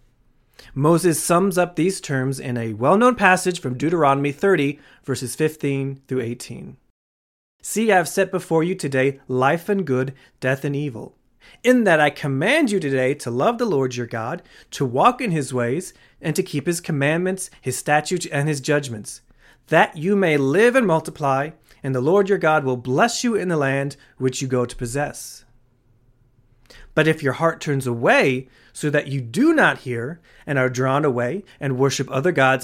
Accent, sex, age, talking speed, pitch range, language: American, male, 30-49, 180 wpm, 130-180 Hz, English